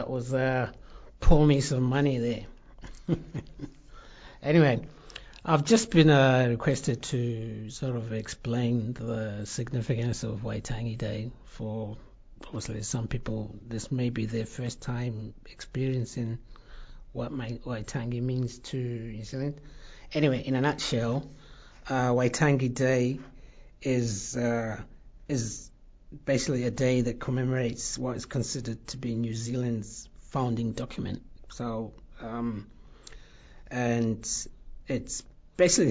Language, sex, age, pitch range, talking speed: English, male, 60-79, 115-130 Hz, 115 wpm